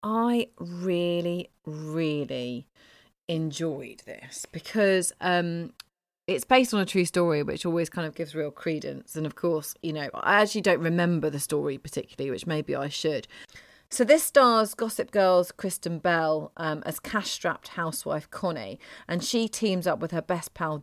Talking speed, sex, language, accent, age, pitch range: 165 wpm, female, English, British, 30-49, 155-190 Hz